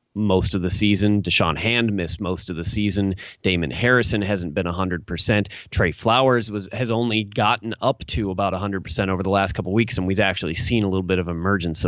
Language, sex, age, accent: English, male, 30-49, American